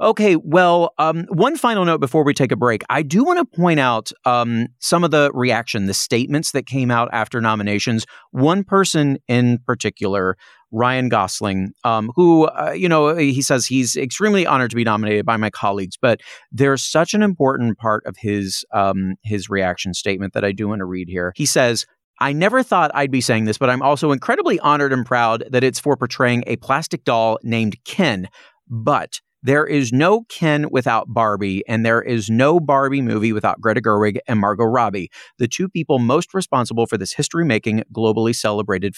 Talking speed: 190 wpm